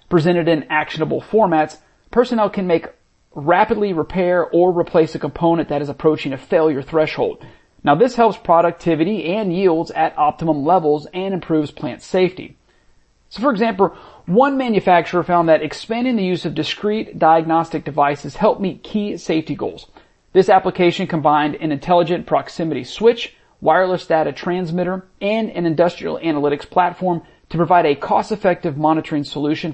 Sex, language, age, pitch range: male, English, 40-59, 155-185 Hz